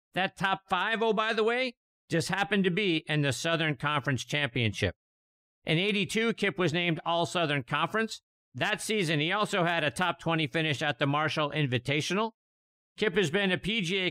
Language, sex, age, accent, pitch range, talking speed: English, male, 50-69, American, 145-195 Hz, 175 wpm